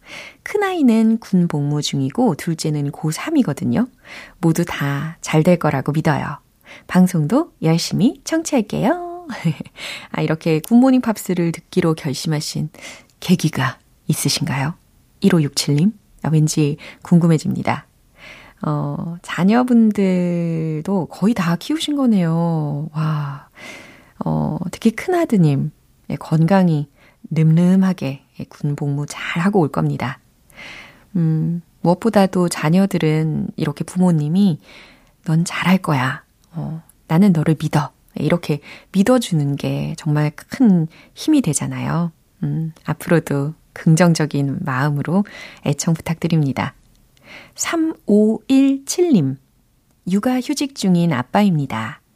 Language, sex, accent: Korean, female, native